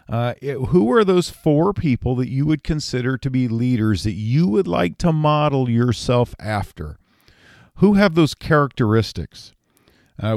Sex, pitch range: male, 115-155 Hz